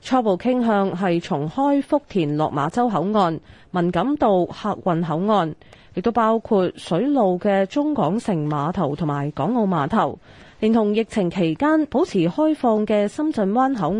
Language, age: Chinese, 30-49